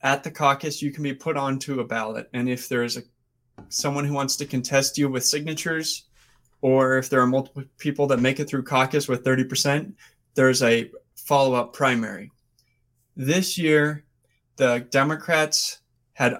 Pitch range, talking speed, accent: 125-145 Hz, 165 wpm, American